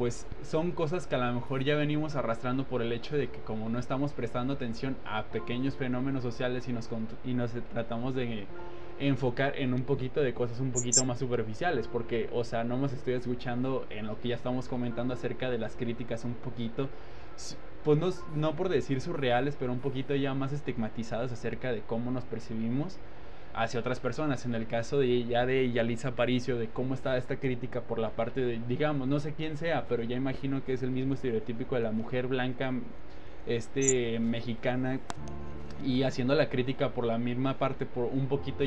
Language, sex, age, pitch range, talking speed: Spanish, male, 20-39, 115-135 Hz, 195 wpm